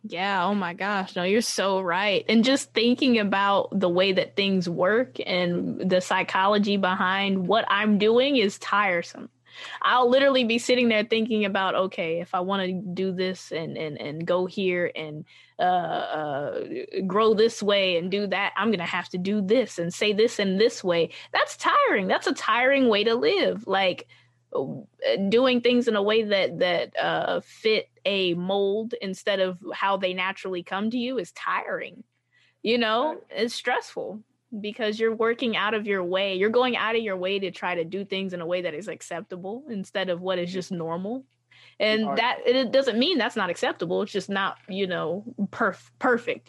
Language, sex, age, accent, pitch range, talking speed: English, female, 20-39, American, 185-230 Hz, 185 wpm